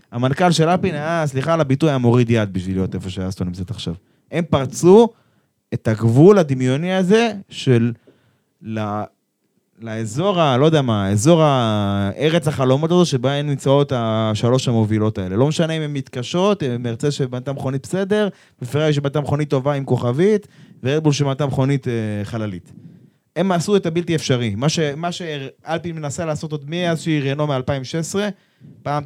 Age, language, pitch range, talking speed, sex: 20-39, Hebrew, 115-165 Hz, 155 wpm, male